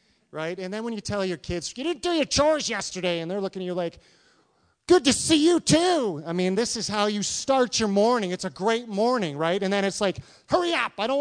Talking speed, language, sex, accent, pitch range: 250 wpm, English, male, American, 130-190 Hz